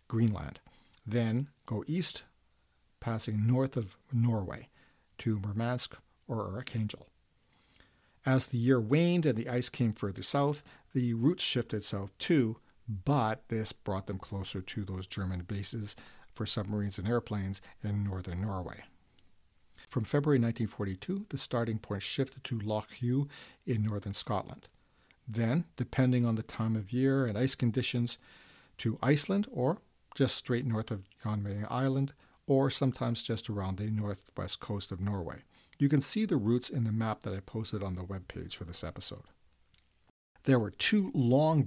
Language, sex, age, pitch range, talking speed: English, male, 50-69, 100-125 Hz, 155 wpm